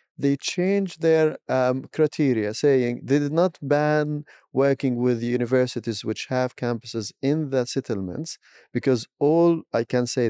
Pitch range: 125-155 Hz